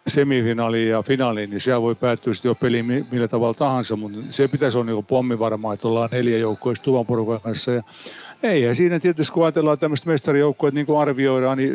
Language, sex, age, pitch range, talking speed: Finnish, male, 60-79, 120-145 Hz, 210 wpm